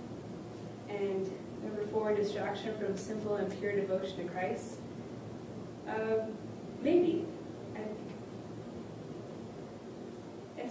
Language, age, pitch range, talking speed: English, 20-39, 175-210 Hz, 80 wpm